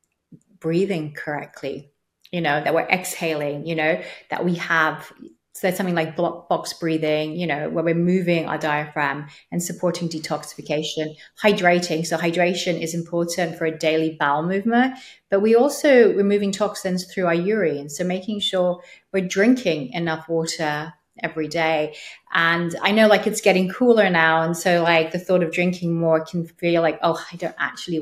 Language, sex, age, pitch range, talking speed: English, female, 30-49, 160-185 Hz, 170 wpm